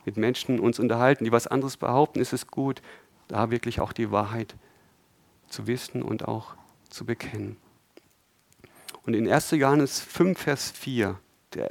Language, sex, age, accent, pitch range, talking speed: German, male, 50-69, German, 110-135 Hz, 155 wpm